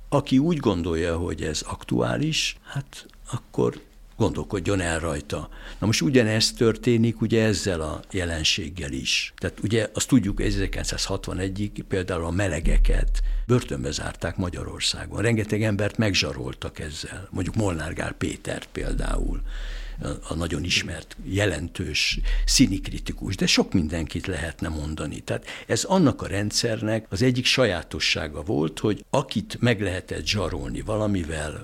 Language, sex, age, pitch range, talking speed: Hungarian, male, 60-79, 85-110 Hz, 125 wpm